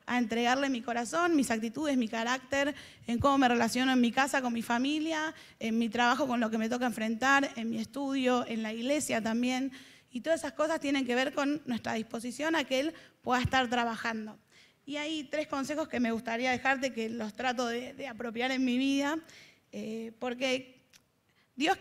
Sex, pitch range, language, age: female, 240-280 Hz, Spanish, 20-39